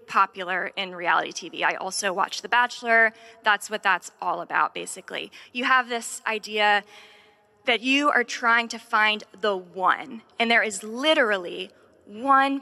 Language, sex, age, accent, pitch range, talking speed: English, female, 20-39, American, 200-235 Hz, 150 wpm